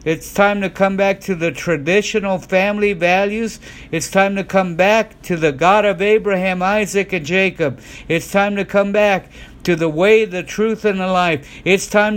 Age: 60-79